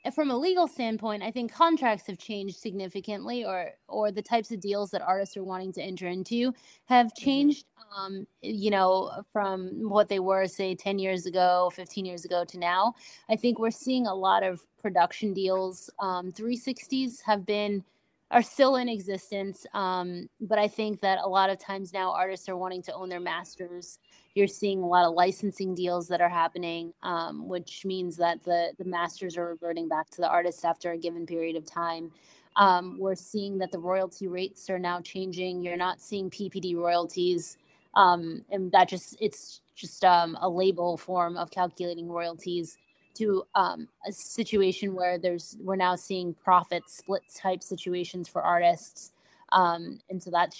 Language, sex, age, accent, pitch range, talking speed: English, female, 20-39, American, 180-210 Hz, 180 wpm